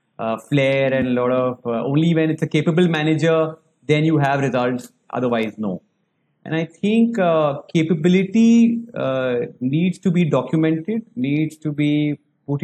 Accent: Indian